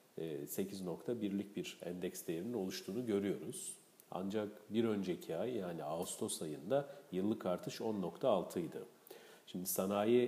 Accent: native